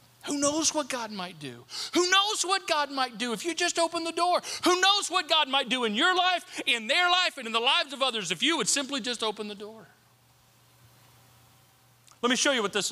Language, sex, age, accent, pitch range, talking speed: English, male, 40-59, American, 205-280 Hz, 230 wpm